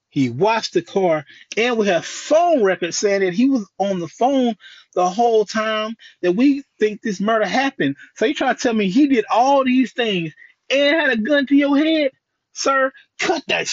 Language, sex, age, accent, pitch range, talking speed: English, male, 30-49, American, 155-250 Hz, 200 wpm